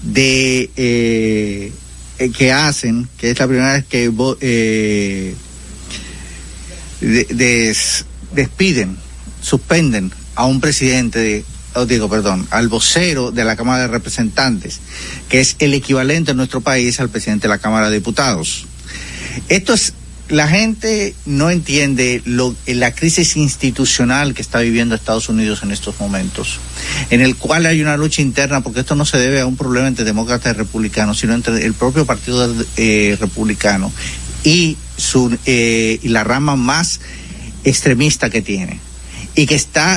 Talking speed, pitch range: 140 wpm, 110-135 Hz